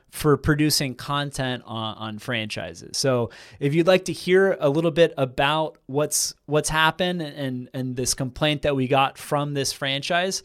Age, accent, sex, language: 30-49, American, male, English